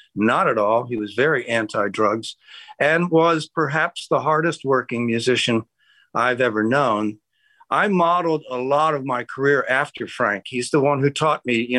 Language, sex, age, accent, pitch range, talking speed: English, male, 50-69, American, 125-160 Hz, 170 wpm